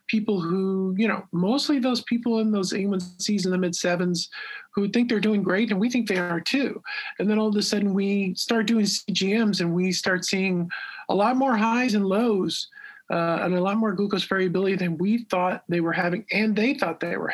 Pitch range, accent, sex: 175-215 Hz, American, male